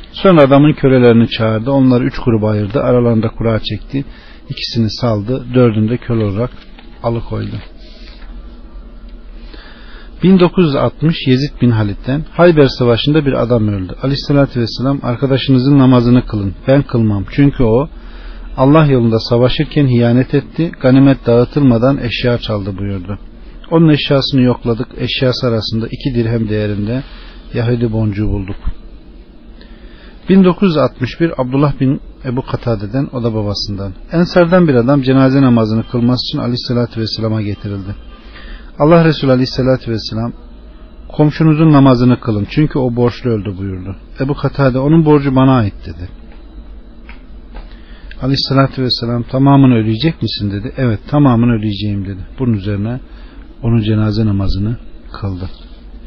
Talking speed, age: 120 wpm, 40-59